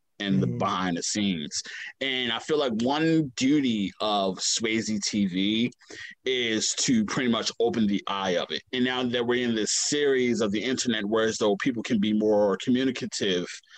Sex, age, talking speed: male, 30-49, 180 wpm